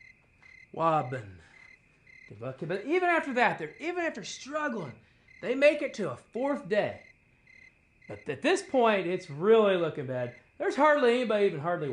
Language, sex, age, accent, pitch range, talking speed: English, male, 30-49, American, 150-225 Hz, 145 wpm